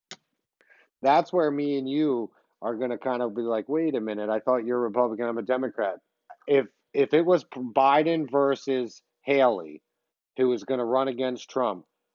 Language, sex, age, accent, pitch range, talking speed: English, male, 40-59, American, 115-130 Hz, 185 wpm